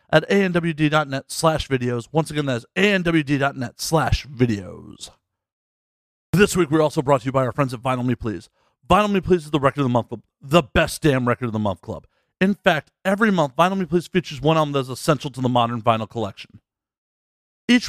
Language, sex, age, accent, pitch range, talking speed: English, male, 40-59, American, 130-185 Hz, 210 wpm